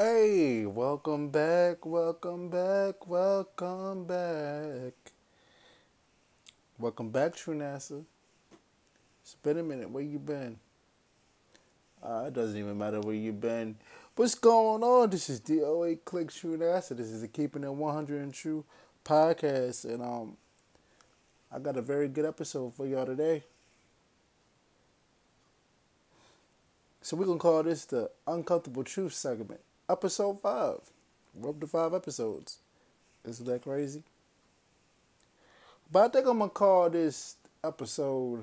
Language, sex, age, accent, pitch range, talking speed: English, male, 20-39, American, 135-180 Hz, 130 wpm